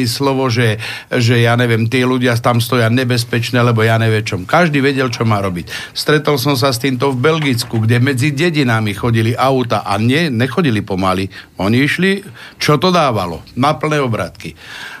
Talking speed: 170 wpm